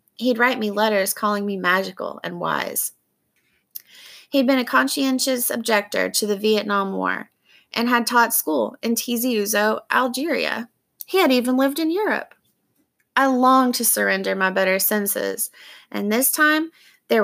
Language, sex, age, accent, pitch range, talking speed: English, female, 20-39, American, 200-260 Hz, 145 wpm